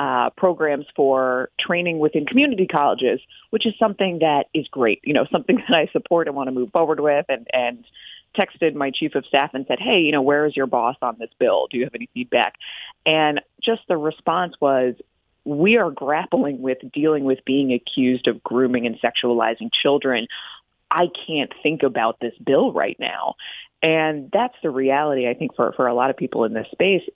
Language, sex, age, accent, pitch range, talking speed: English, female, 30-49, American, 130-165 Hz, 200 wpm